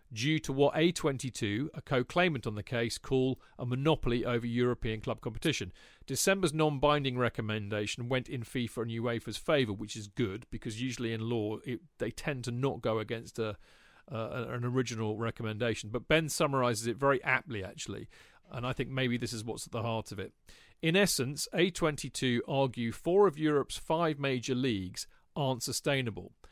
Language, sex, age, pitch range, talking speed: English, male, 40-59, 115-145 Hz, 165 wpm